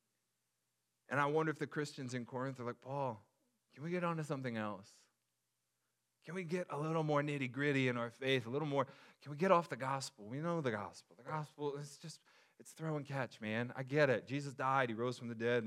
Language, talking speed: English, 230 wpm